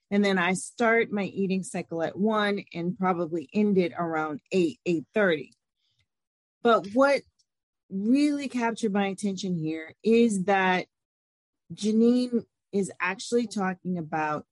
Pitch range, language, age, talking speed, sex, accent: 180-230 Hz, English, 30-49, 125 wpm, female, American